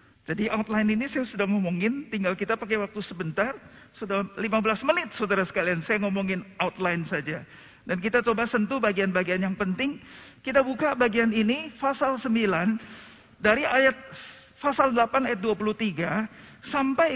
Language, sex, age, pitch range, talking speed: Indonesian, male, 50-69, 165-230 Hz, 140 wpm